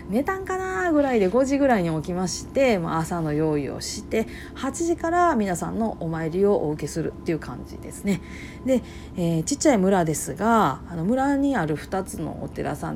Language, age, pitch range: Japanese, 40-59, 165-240 Hz